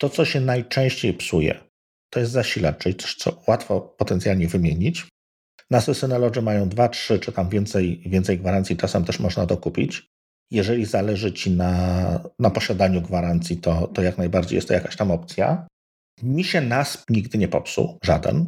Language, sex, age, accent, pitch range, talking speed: Polish, male, 50-69, native, 95-130 Hz, 165 wpm